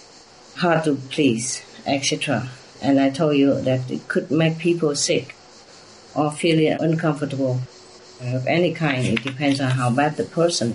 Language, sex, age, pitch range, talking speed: English, female, 50-69, 130-155 Hz, 150 wpm